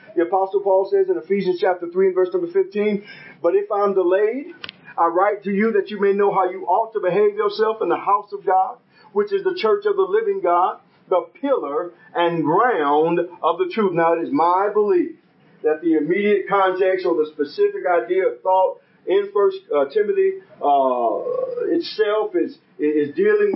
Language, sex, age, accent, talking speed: English, male, 40-59, American, 190 wpm